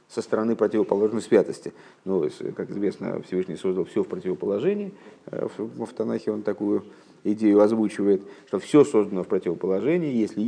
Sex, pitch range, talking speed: male, 100-115 Hz, 135 wpm